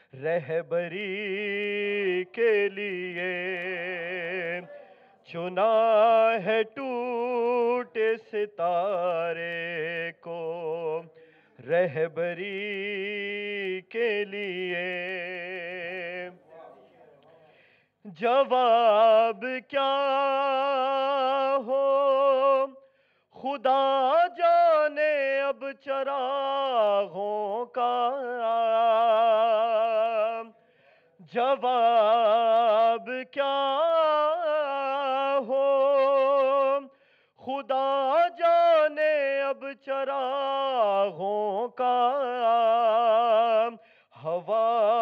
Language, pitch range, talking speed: Urdu, 185-270 Hz, 35 wpm